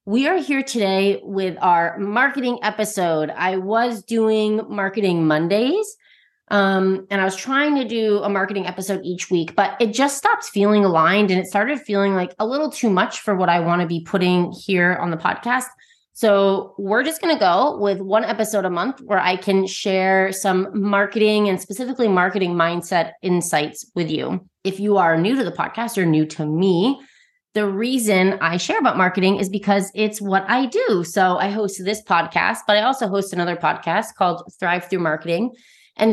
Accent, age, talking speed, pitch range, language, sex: American, 30-49, 190 wpm, 180-220 Hz, English, female